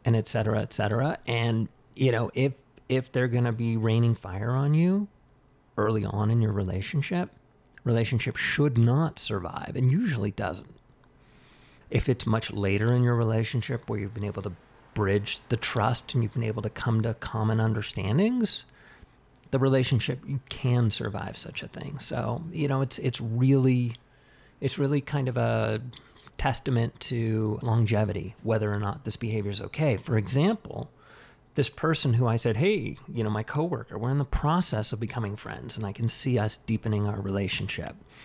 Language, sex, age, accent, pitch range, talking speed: English, male, 30-49, American, 110-140 Hz, 175 wpm